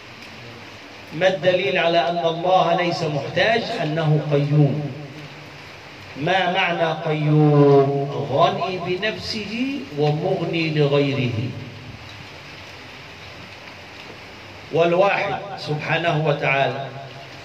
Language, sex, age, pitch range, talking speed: Arabic, male, 40-59, 135-185 Hz, 65 wpm